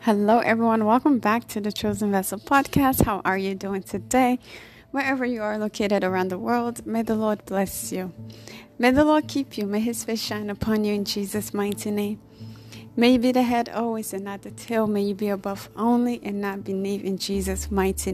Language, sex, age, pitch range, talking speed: English, female, 30-49, 195-220 Hz, 205 wpm